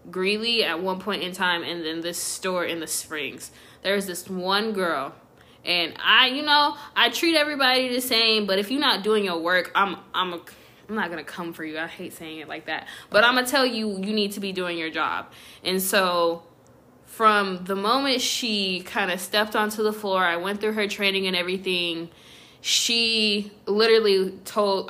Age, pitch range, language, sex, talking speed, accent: 20-39, 170-215 Hz, English, female, 195 wpm, American